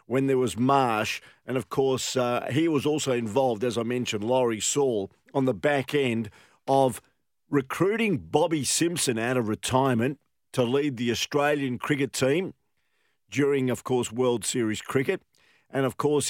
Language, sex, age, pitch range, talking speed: English, male, 50-69, 120-145 Hz, 160 wpm